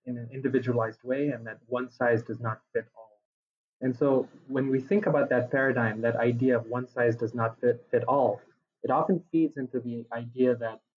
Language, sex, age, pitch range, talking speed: English, male, 20-39, 115-140 Hz, 200 wpm